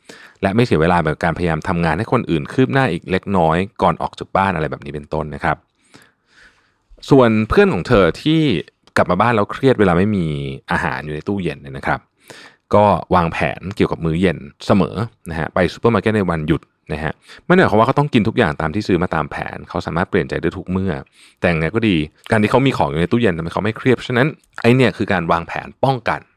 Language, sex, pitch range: Thai, male, 80-120 Hz